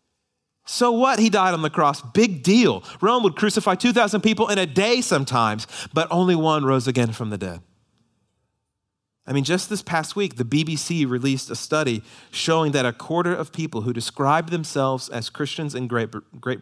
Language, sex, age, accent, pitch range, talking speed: English, male, 30-49, American, 120-185 Hz, 185 wpm